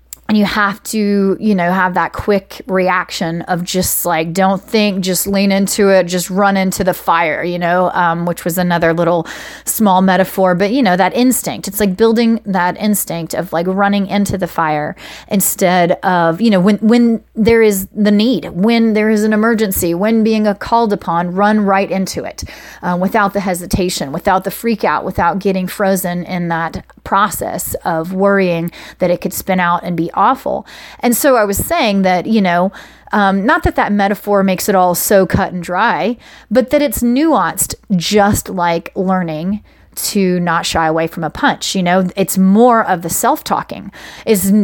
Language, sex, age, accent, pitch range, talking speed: English, female, 30-49, American, 175-215 Hz, 185 wpm